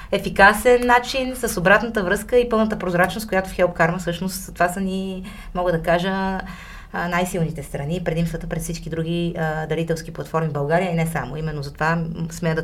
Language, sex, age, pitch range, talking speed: Bulgarian, female, 30-49, 155-185 Hz, 175 wpm